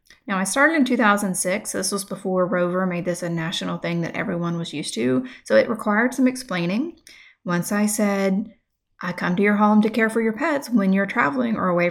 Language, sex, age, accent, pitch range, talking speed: English, female, 30-49, American, 185-240 Hz, 210 wpm